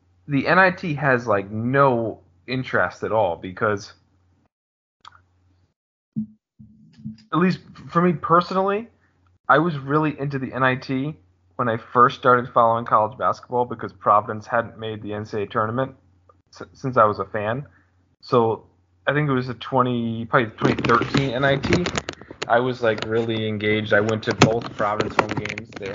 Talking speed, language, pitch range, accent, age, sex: 145 wpm, English, 95-125 Hz, American, 20-39, male